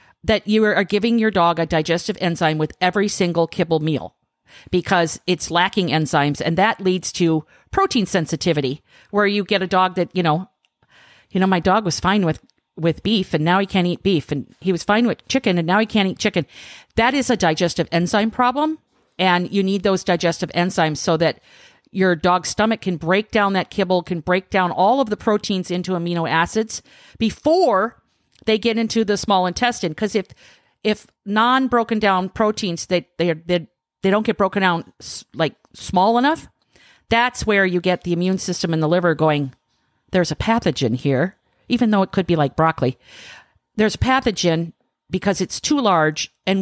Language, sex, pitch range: English, female, 170-210 Hz